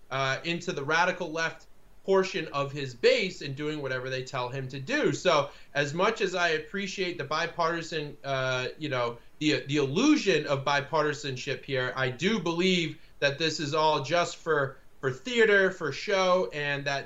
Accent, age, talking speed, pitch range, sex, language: American, 30-49, 170 wpm, 140-175 Hz, male, English